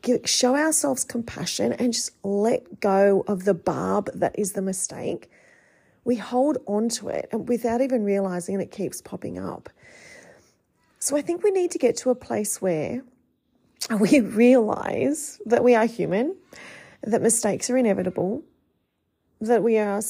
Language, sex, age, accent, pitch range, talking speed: English, female, 30-49, Australian, 190-240 Hz, 155 wpm